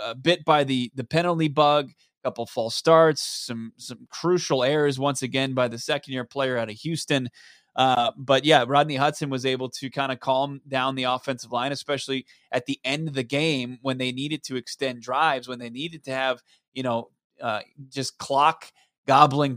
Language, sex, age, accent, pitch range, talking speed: English, male, 20-39, American, 130-150 Hz, 195 wpm